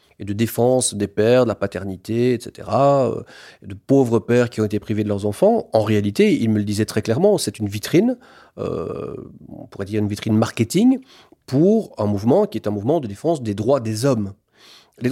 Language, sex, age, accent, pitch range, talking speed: French, male, 40-59, French, 110-155 Hz, 200 wpm